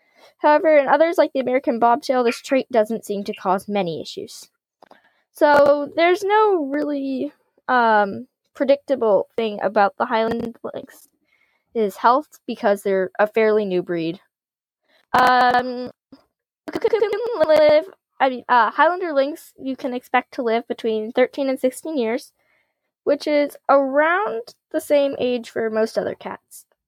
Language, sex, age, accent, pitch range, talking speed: English, female, 10-29, American, 225-300 Hz, 145 wpm